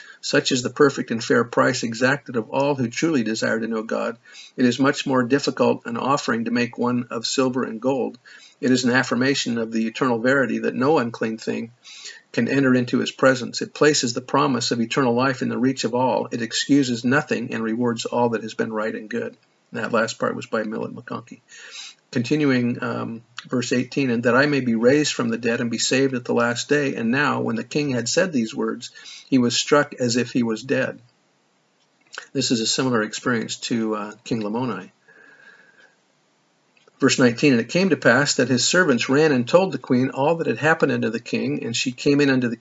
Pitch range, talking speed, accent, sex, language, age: 120-140 Hz, 215 wpm, American, male, English, 50-69